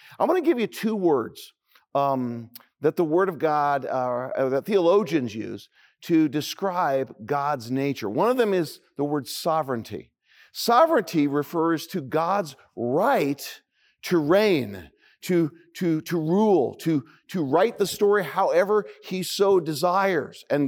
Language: English